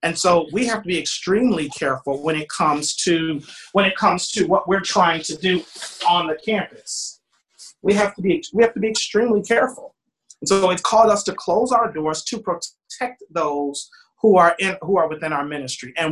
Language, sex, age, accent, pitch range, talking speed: English, male, 40-59, American, 160-210 Hz, 205 wpm